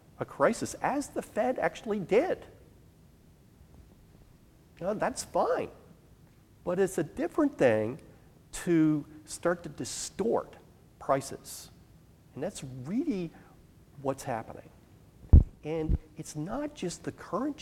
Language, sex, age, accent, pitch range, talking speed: English, male, 40-59, American, 115-170 Hz, 100 wpm